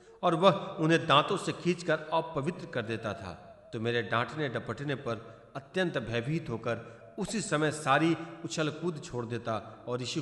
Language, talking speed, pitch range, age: Hindi, 165 wpm, 130-175 Hz, 40-59